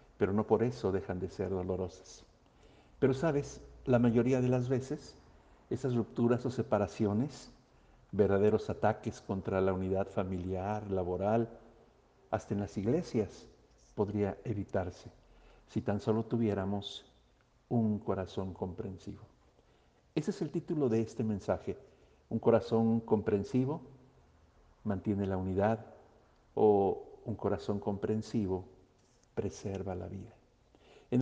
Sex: male